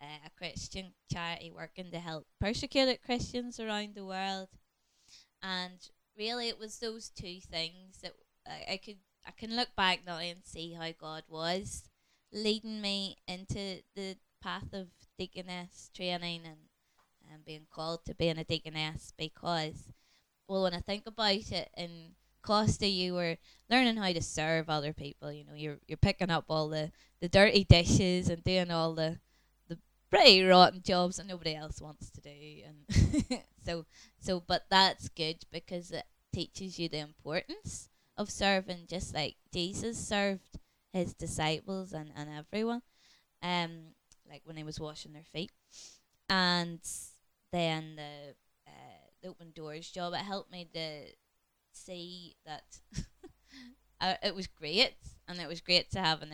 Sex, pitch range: female, 155-190 Hz